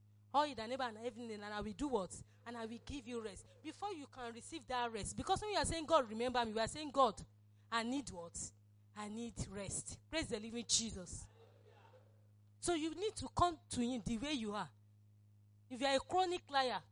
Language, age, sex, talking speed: English, 40-59, female, 215 wpm